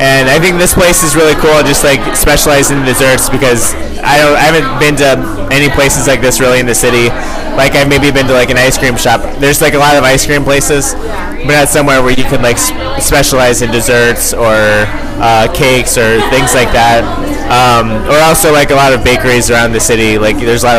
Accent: American